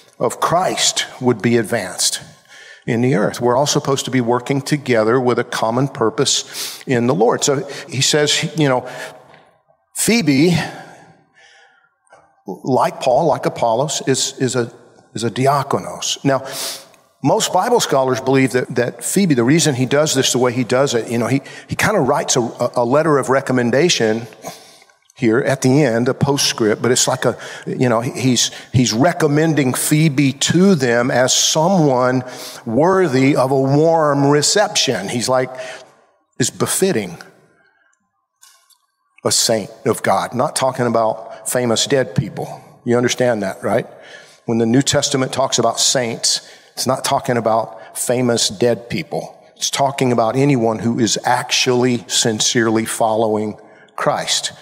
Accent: American